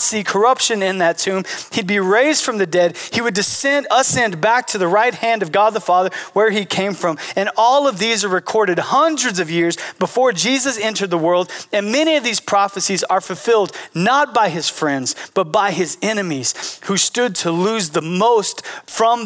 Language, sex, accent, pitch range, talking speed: English, male, American, 155-215 Hz, 200 wpm